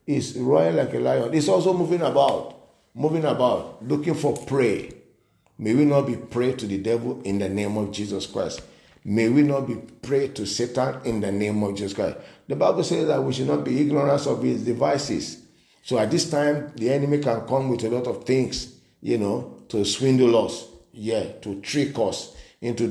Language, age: English, 50-69